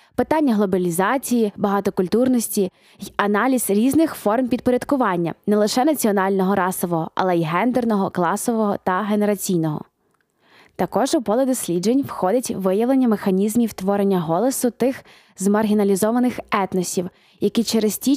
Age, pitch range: 20-39, 195-230 Hz